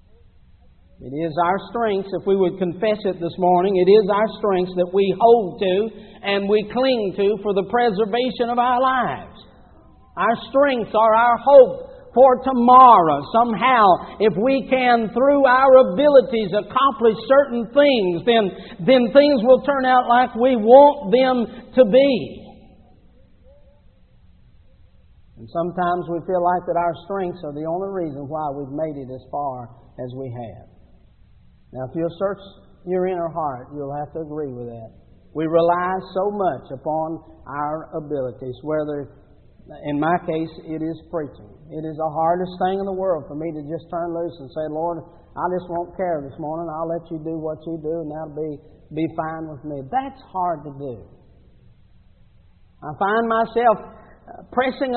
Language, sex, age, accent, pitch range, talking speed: English, male, 50-69, American, 160-245 Hz, 165 wpm